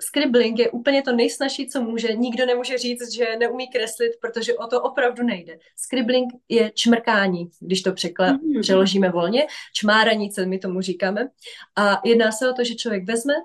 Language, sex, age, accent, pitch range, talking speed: Czech, female, 20-39, native, 195-240 Hz, 175 wpm